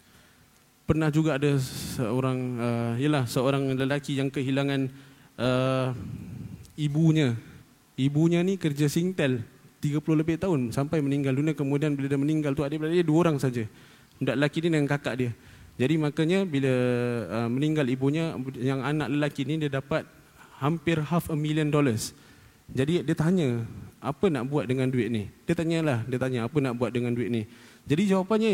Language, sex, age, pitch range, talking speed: Malay, male, 20-39, 130-170 Hz, 160 wpm